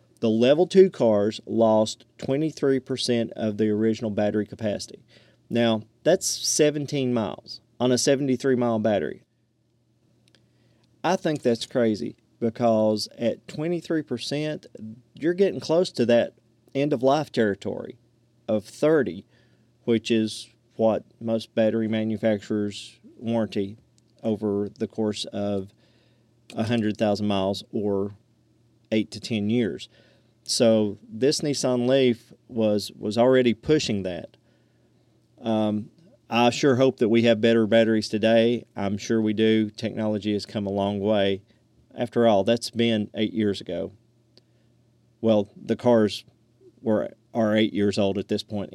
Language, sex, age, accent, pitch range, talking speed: English, male, 40-59, American, 110-120 Hz, 125 wpm